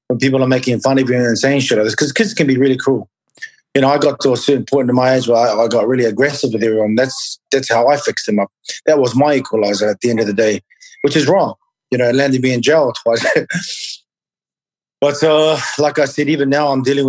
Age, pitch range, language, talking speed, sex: 30-49, 130-155 Hz, English, 250 wpm, male